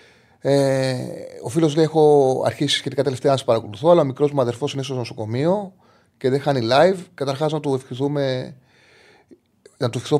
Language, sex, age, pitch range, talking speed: Greek, male, 30-49, 115-165 Hz, 175 wpm